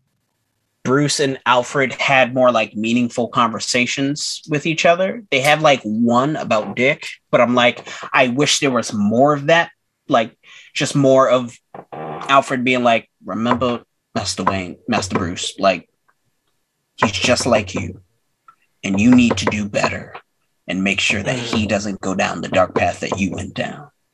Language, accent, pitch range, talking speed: English, American, 110-140 Hz, 160 wpm